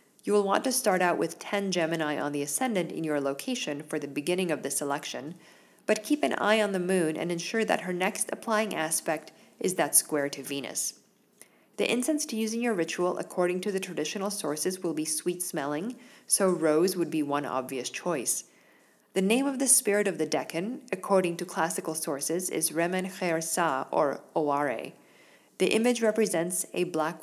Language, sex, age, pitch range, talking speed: English, female, 40-59, 155-200 Hz, 185 wpm